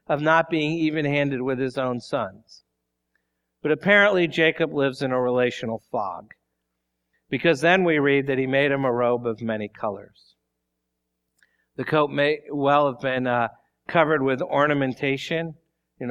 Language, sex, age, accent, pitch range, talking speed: English, male, 50-69, American, 125-160 Hz, 150 wpm